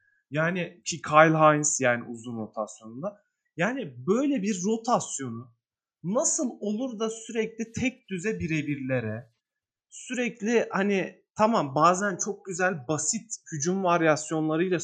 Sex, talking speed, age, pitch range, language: male, 110 wpm, 30-49, 155-225 Hz, Turkish